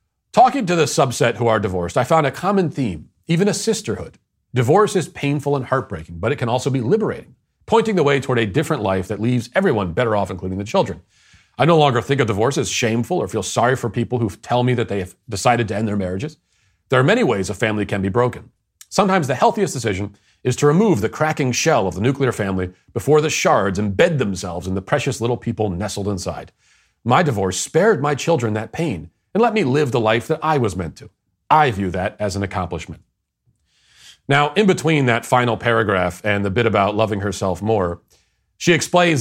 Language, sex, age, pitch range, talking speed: English, male, 40-59, 105-145 Hz, 215 wpm